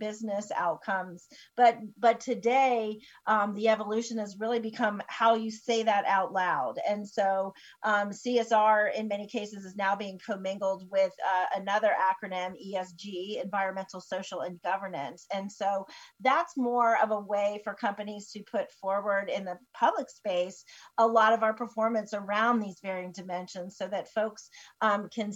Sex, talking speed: female, 160 wpm